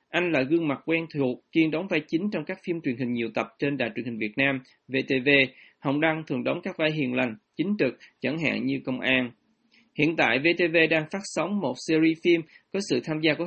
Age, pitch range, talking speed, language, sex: 20-39, 135-170 Hz, 235 wpm, Vietnamese, male